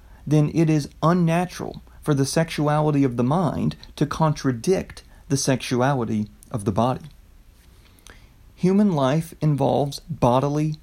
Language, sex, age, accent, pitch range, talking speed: English, male, 30-49, American, 125-160 Hz, 115 wpm